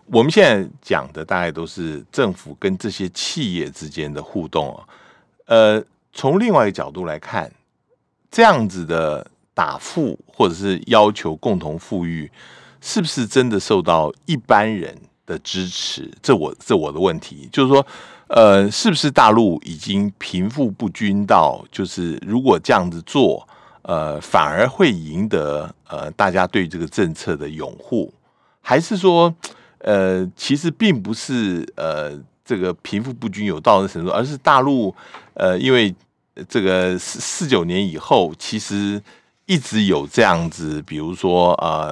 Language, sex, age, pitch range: Chinese, male, 60-79, 90-130 Hz